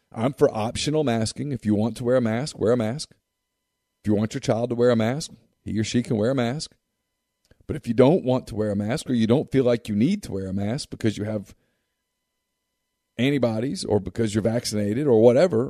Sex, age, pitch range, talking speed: male, 50-69, 105-135 Hz, 230 wpm